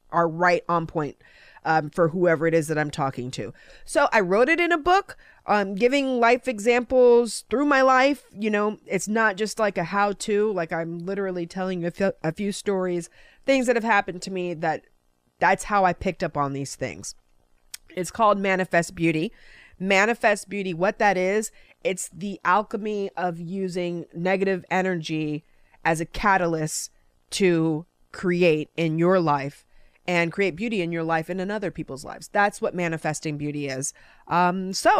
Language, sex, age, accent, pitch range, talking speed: English, female, 30-49, American, 165-215 Hz, 175 wpm